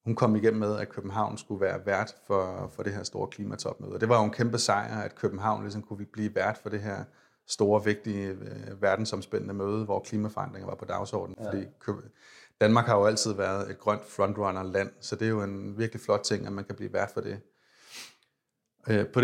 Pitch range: 100-115 Hz